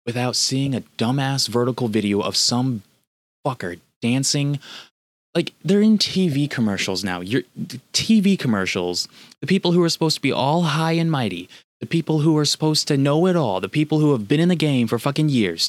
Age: 20-39